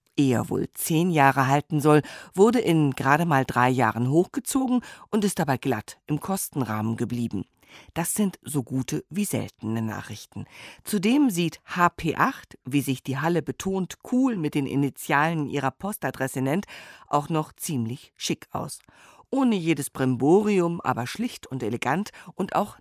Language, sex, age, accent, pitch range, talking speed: German, female, 50-69, German, 130-180 Hz, 145 wpm